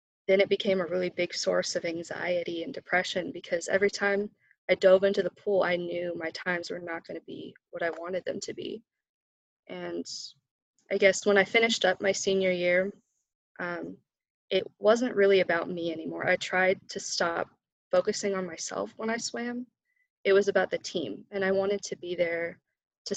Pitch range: 175-200 Hz